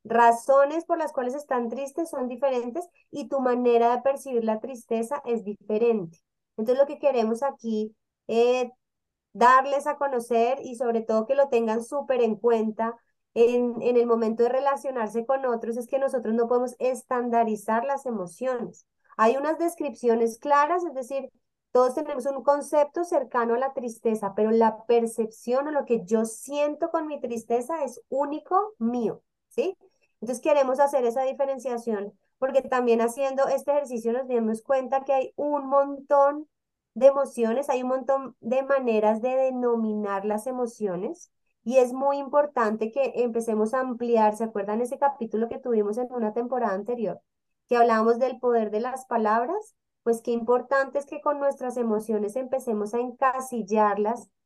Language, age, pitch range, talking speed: Spanish, 30-49, 230-275 Hz, 160 wpm